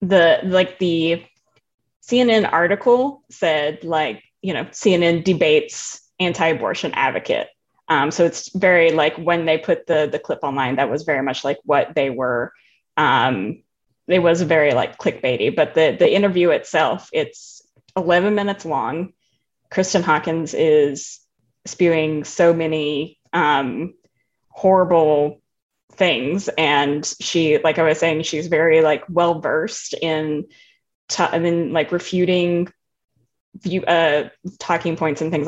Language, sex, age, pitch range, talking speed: English, female, 20-39, 155-185 Hz, 130 wpm